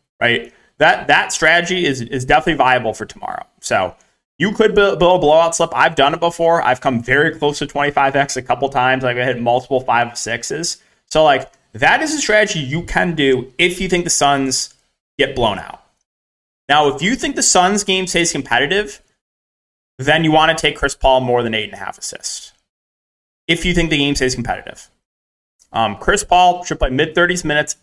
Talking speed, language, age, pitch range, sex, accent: 195 wpm, English, 30-49, 125-165 Hz, male, American